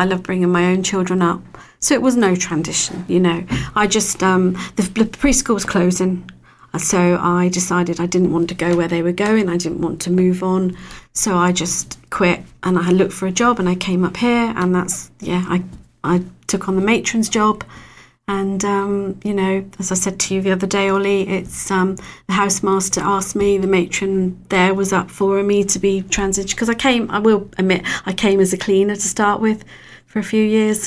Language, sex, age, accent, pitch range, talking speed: English, female, 40-59, British, 180-200 Hz, 215 wpm